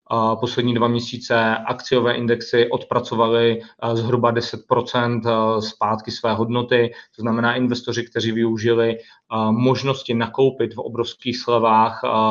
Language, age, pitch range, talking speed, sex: Czech, 30-49, 110-120 Hz, 100 wpm, male